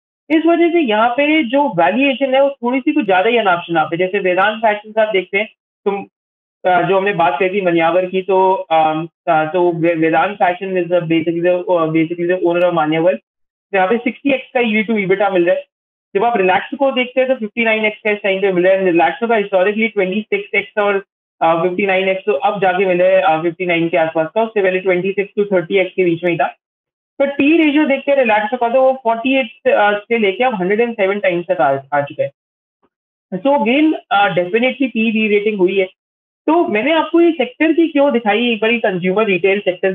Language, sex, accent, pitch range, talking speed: Hindi, male, native, 185-255 Hz, 130 wpm